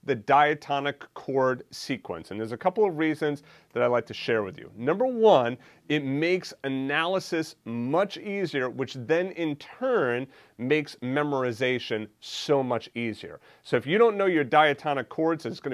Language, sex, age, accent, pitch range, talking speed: English, male, 30-49, American, 115-155 Hz, 165 wpm